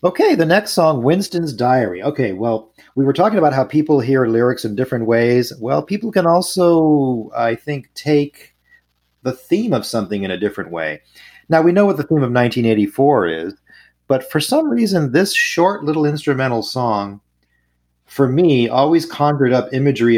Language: English